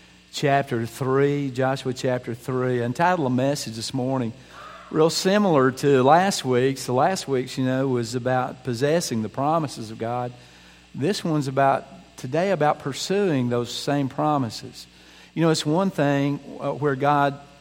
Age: 50-69